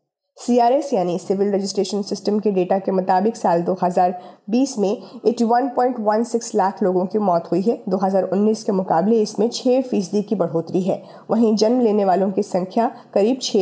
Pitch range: 190-235 Hz